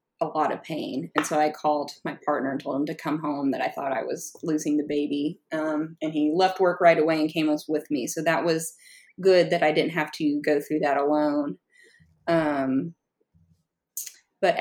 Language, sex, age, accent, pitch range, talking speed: English, female, 30-49, American, 150-180 Hz, 205 wpm